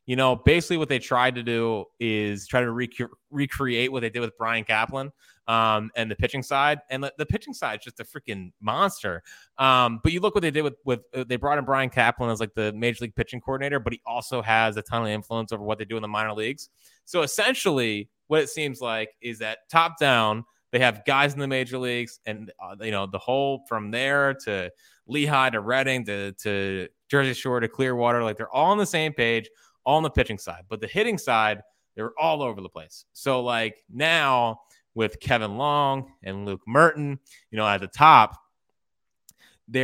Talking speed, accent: 215 wpm, American